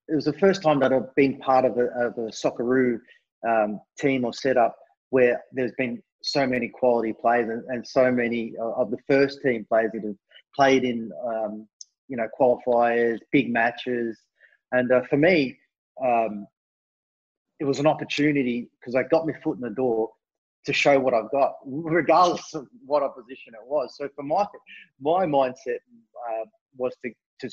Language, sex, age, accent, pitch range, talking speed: English, male, 30-49, Australian, 115-140 Hz, 175 wpm